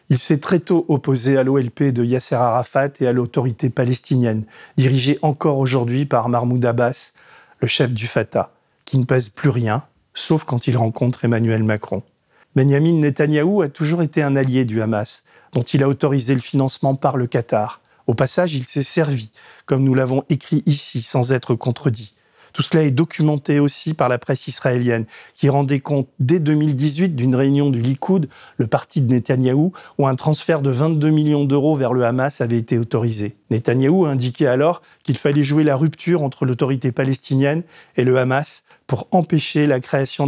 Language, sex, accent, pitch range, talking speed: French, male, French, 125-150 Hz, 180 wpm